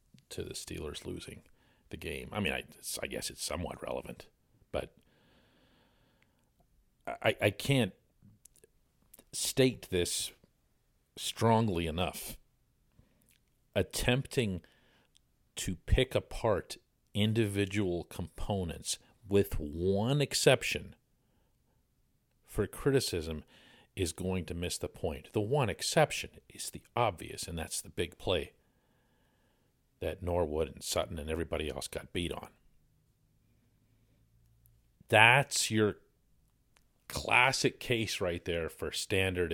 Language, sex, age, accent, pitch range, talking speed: English, male, 50-69, American, 90-115 Hz, 105 wpm